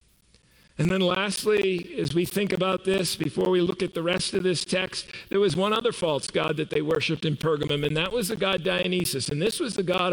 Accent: American